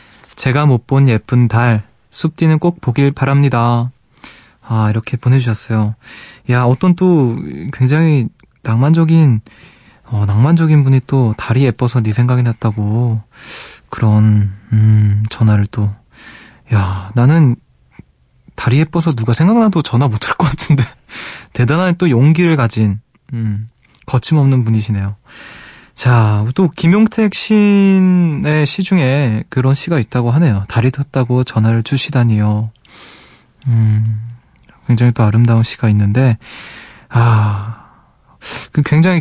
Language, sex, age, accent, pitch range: Korean, male, 20-39, native, 110-140 Hz